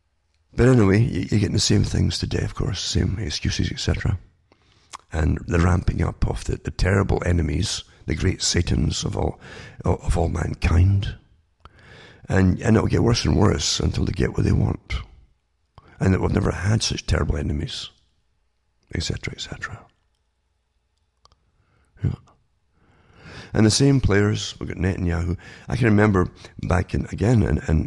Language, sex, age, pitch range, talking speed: English, male, 50-69, 85-110 Hz, 150 wpm